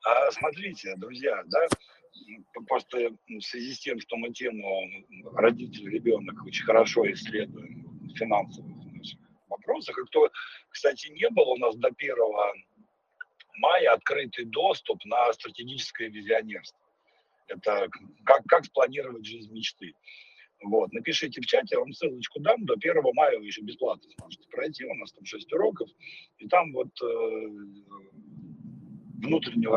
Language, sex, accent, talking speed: Russian, male, native, 135 wpm